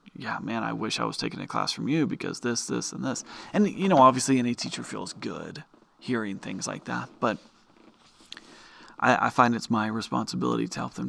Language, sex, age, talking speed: English, male, 30-49, 205 wpm